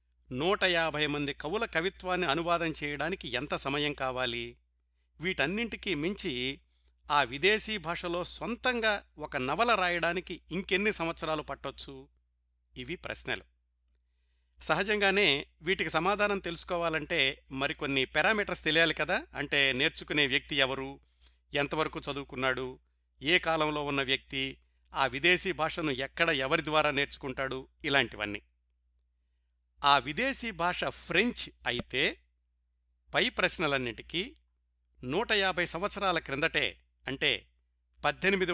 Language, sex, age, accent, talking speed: Telugu, male, 60-79, native, 100 wpm